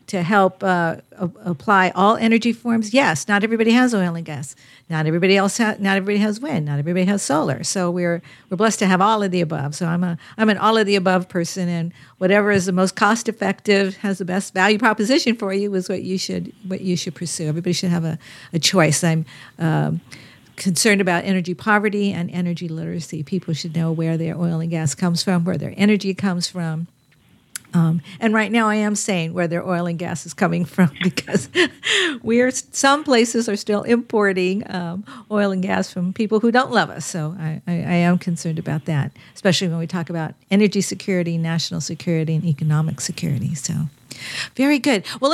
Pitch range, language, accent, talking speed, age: 170-215 Hz, English, American, 210 wpm, 50-69